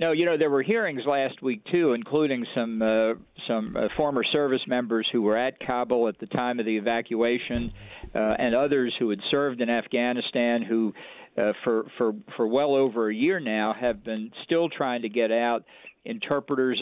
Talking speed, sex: 190 wpm, male